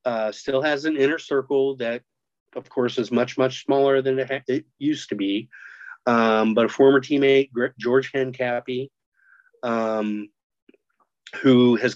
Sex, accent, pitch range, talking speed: male, American, 115-135 Hz, 140 wpm